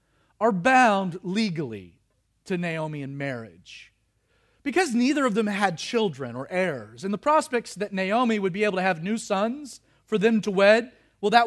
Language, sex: English, male